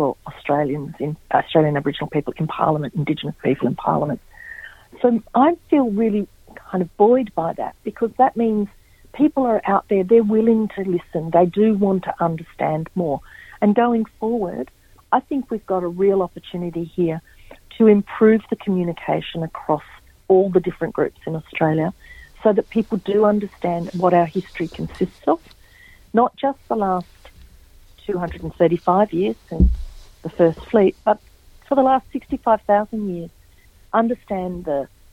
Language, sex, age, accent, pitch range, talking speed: English, female, 50-69, Australian, 165-215 Hz, 155 wpm